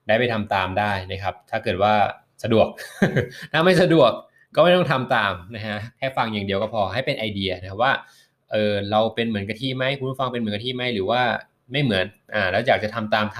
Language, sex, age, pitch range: Thai, male, 20-39, 100-120 Hz